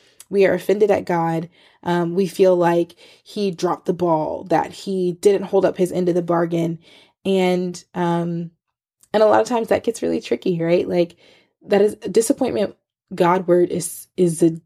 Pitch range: 170-200 Hz